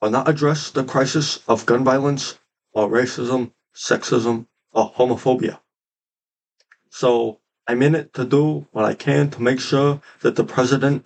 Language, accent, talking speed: English, American, 150 wpm